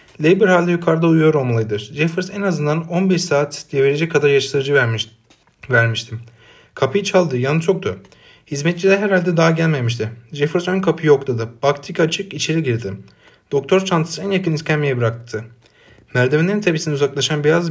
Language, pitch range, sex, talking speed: Turkish, 120-165 Hz, male, 140 wpm